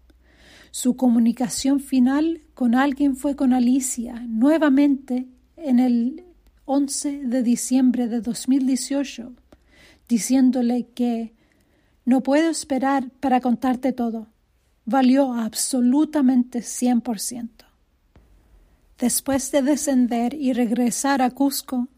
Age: 40-59